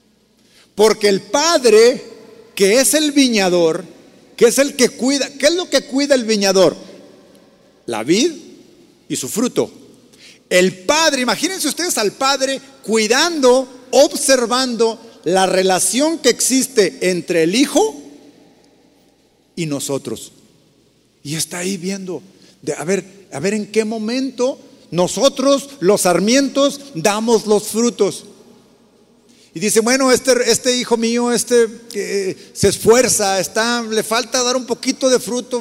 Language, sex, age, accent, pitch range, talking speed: Spanish, male, 50-69, Mexican, 190-265 Hz, 130 wpm